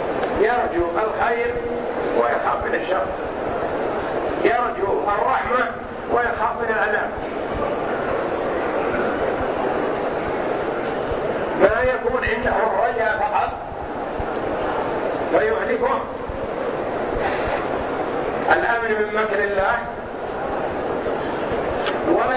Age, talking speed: 60-79, 55 wpm